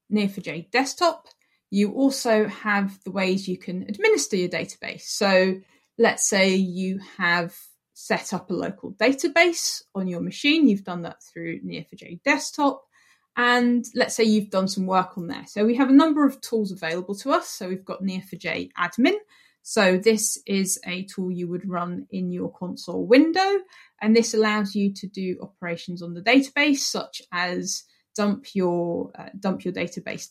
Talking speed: 175 wpm